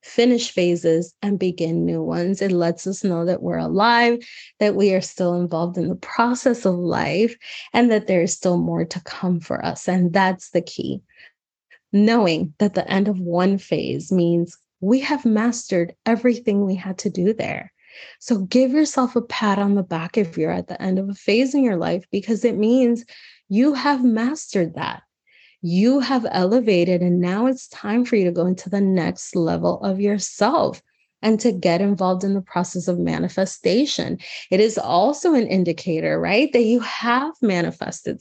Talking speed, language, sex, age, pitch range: 180 wpm, English, female, 20-39, 180-235 Hz